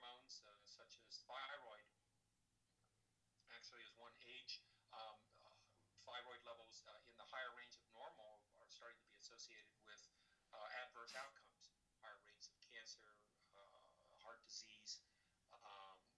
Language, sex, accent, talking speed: English, male, American, 125 wpm